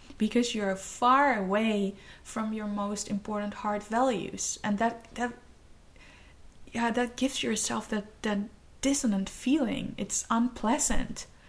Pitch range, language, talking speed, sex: 205-250 Hz, Dutch, 120 wpm, female